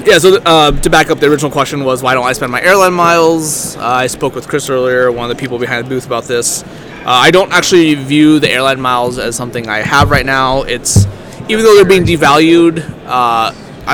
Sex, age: male, 20-39